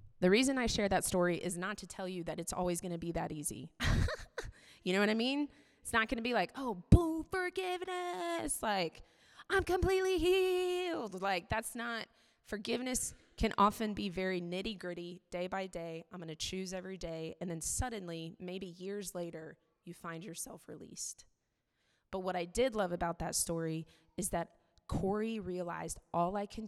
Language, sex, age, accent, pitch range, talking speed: English, female, 20-39, American, 170-220 Hz, 180 wpm